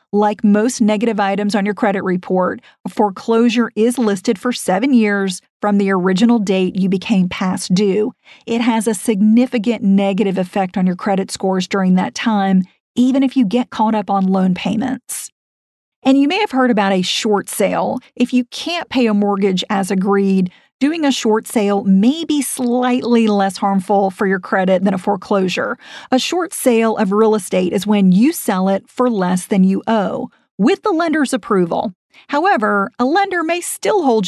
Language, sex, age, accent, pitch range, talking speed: English, female, 40-59, American, 195-245 Hz, 180 wpm